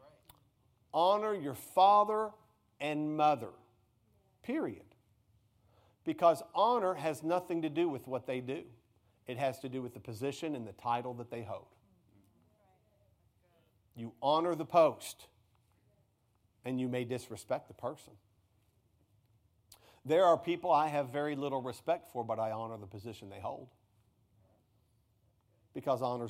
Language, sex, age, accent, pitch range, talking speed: English, male, 50-69, American, 110-145 Hz, 130 wpm